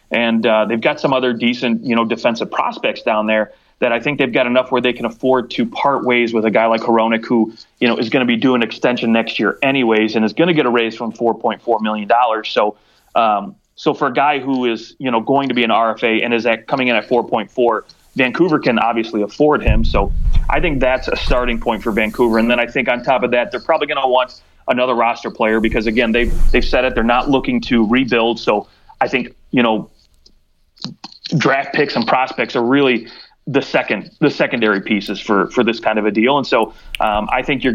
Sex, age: male, 30-49